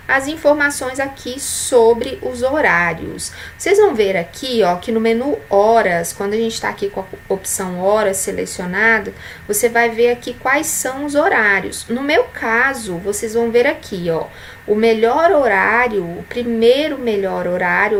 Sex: female